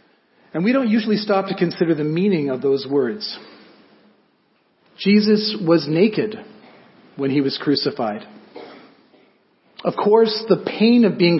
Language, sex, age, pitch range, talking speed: English, male, 40-59, 140-185 Hz, 130 wpm